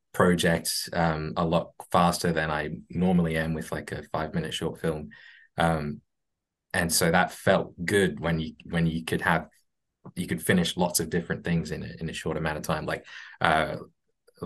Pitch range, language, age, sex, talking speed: 80-90 Hz, English, 20-39, male, 185 wpm